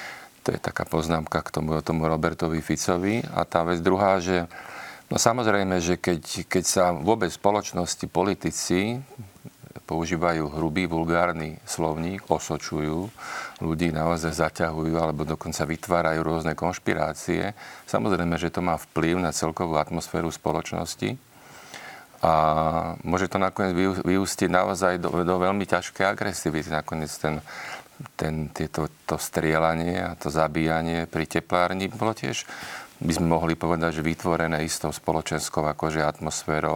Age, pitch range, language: 50-69, 80-90 Hz, Slovak